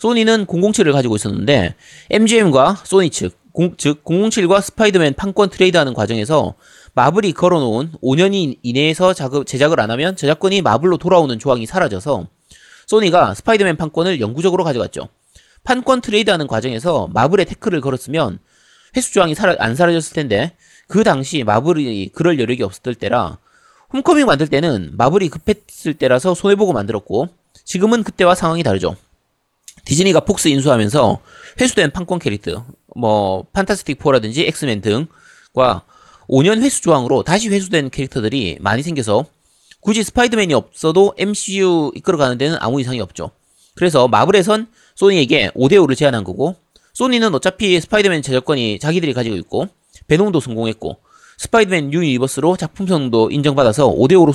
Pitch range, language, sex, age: 135-195 Hz, Korean, male, 30-49